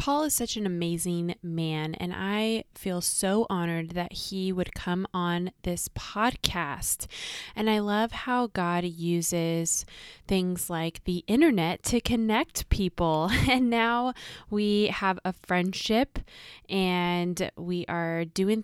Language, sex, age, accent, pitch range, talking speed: English, female, 20-39, American, 175-210 Hz, 130 wpm